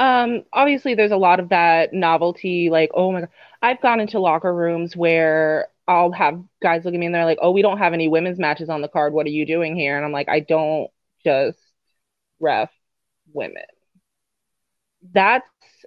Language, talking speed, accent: English, 195 wpm, American